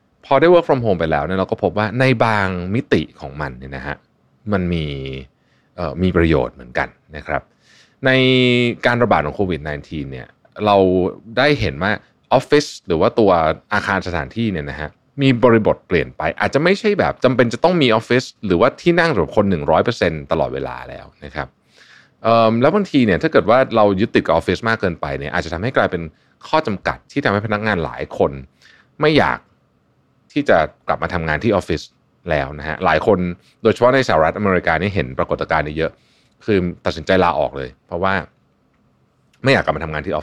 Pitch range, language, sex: 75-115 Hz, Thai, male